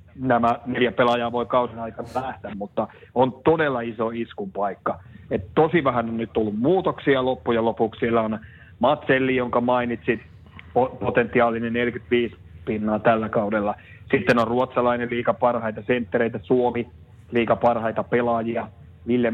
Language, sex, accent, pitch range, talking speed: Finnish, male, native, 105-125 Hz, 130 wpm